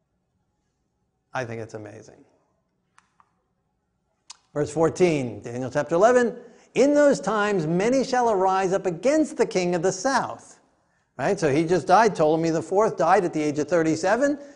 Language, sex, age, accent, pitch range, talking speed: English, male, 50-69, American, 145-210 Hz, 150 wpm